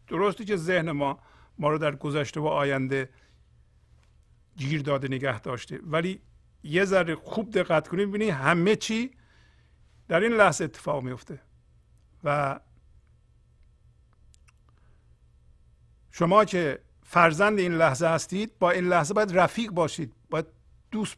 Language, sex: Persian, male